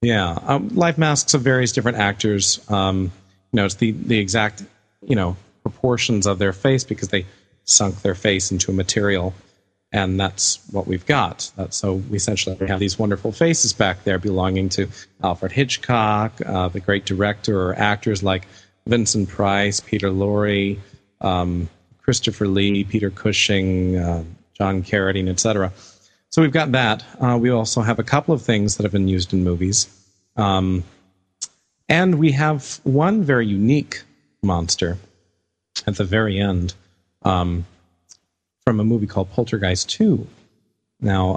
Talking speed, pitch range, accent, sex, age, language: 150 wpm, 95-115 Hz, American, male, 40-59, English